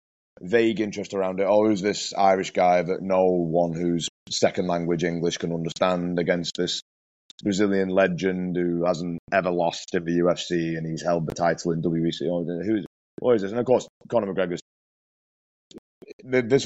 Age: 20-39